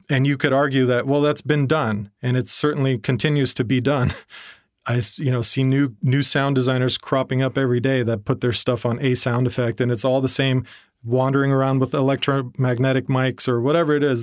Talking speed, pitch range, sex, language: 205 wpm, 120-135 Hz, male, English